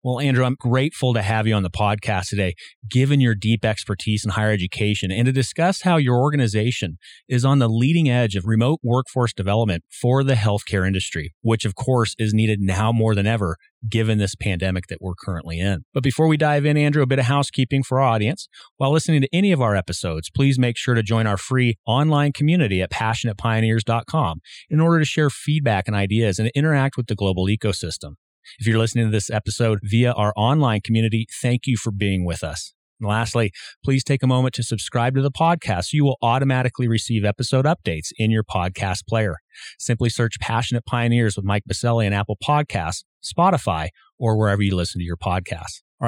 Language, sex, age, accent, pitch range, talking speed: English, male, 30-49, American, 105-130 Hz, 200 wpm